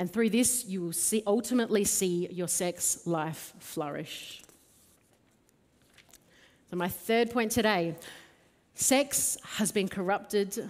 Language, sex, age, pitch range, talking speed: English, female, 40-59, 175-225 Hz, 110 wpm